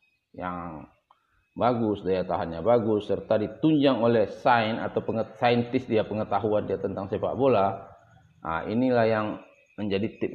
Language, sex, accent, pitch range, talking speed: Indonesian, male, native, 95-115 Hz, 135 wpm